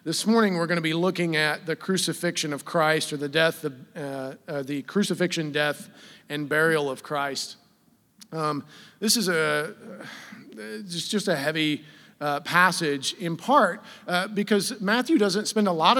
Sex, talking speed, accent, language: male, 175 wpm, American, English